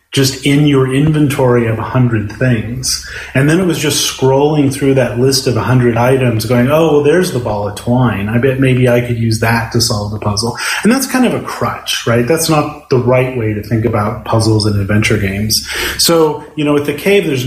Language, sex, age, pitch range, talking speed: German, male, 30-49, 120-145 Hz, 220 wpm